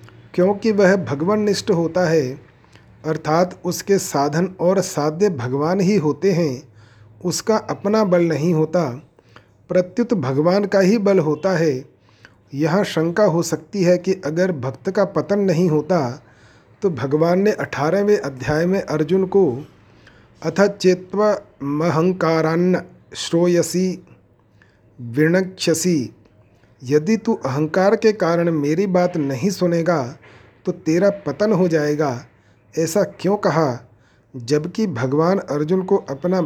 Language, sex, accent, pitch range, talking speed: Hindi, male, native, 135-185 Hz, 120 wpm